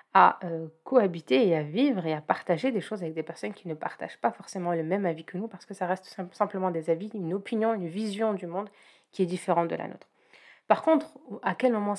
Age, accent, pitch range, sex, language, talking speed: 30-49, French, 170-205 Hz, female, French, 235 wpm